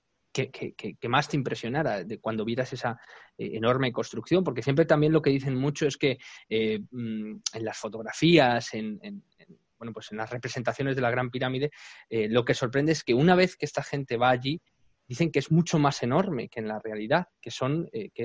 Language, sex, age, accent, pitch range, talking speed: Spanish, male, 20-39, Spanish, 115-150 Hz, 190 wpm